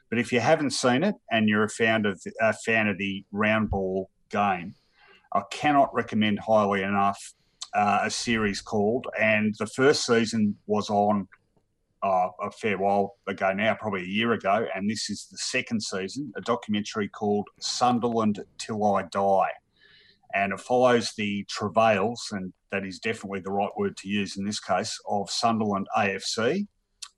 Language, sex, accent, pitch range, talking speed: English, male, Australian, 100-120 Hz, 170 wpm